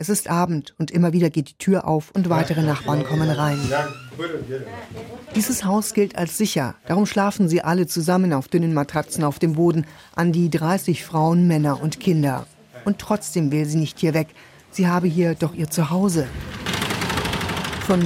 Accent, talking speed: German, 175 wpm